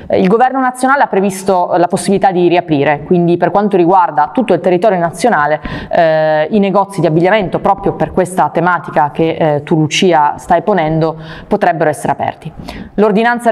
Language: Italian